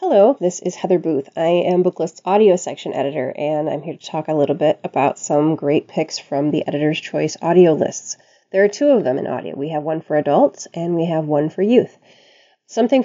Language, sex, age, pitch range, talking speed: English, female, 30-49, 155-190 Hz, 220 wpm